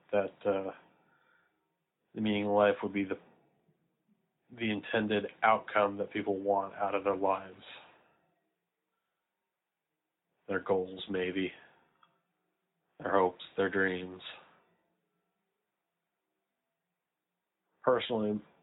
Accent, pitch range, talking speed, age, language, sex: American, 95-105 Hz, 85 wpm, 30-49, English, male